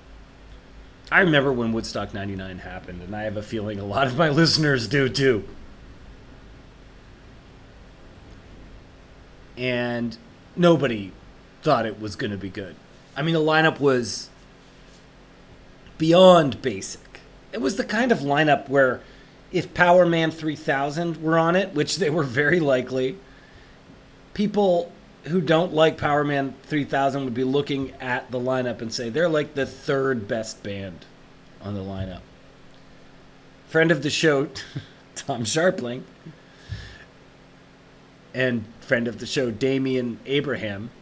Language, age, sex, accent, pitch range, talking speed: English, 30-49, male, American, 120-160 Hz, 130 wpm